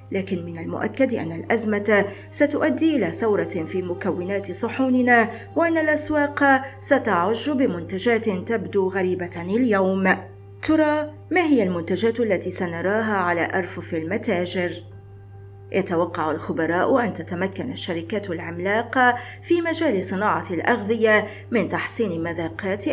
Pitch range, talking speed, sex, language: 185-255 Hz, 105 wpm, female, Arabic